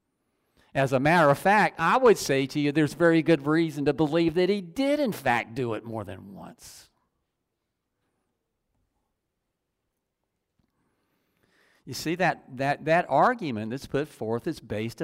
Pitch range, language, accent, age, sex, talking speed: 105-145 Hz, English, American, 50-69, male, 150 wpm